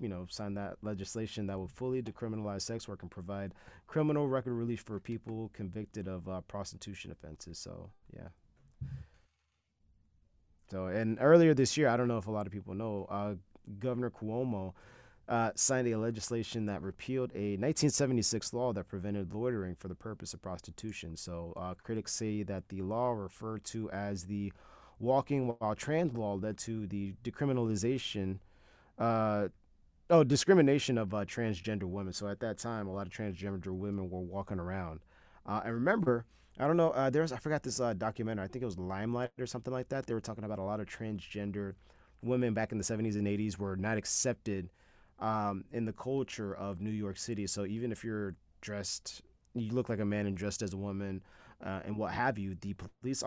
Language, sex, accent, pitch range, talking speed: English, male, American, 95-115 Hz, 190 wpm